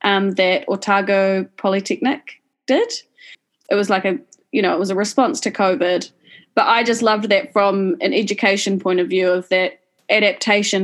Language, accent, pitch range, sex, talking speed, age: English, Australian, 180-225 Hz, female, 170 wpm, 20-39